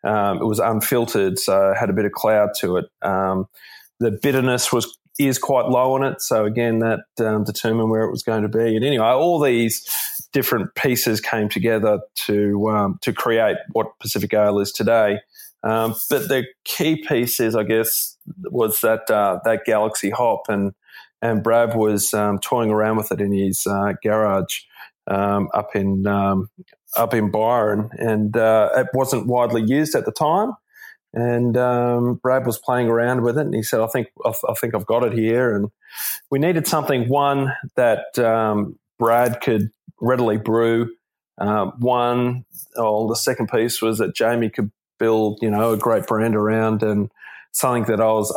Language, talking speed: English, 180 wpm